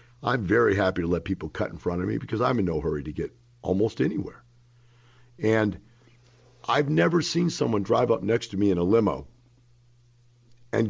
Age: 50-69